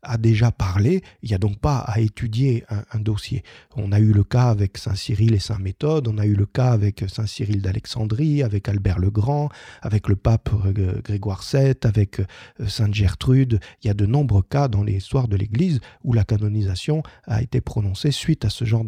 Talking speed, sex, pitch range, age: 205 wpm, male, 105-135 Hz, 40-59